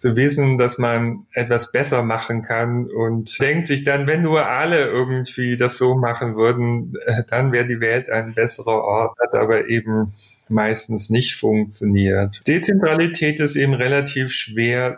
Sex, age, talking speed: male, 30-49, 150 wpm